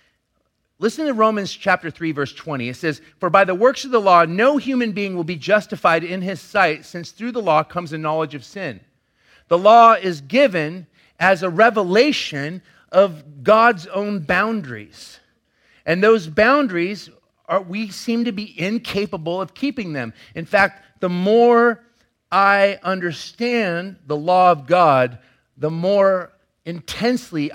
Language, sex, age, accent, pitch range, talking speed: English, male, 40-59, American, 140-205 Hz, 150 wpm